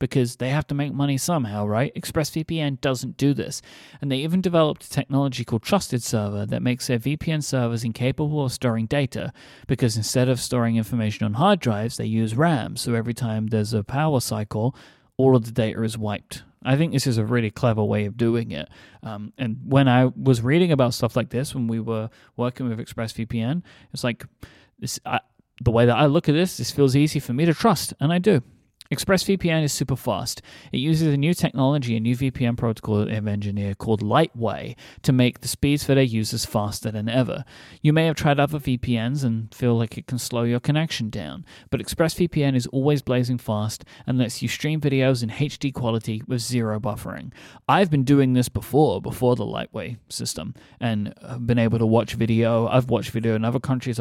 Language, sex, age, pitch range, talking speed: English, male, 30-49, 115-140 Hz, 200 wpm